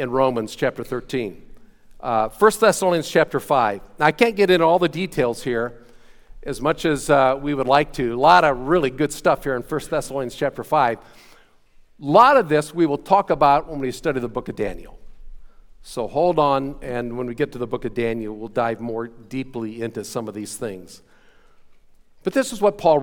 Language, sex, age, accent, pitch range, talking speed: English, male, 50-69, American, 120-160 Hz, 205 wpm